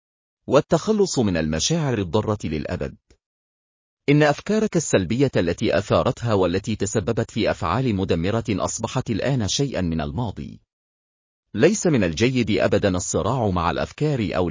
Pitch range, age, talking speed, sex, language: 90-135 Hz, 40-59, 115 wpm, male, Arabic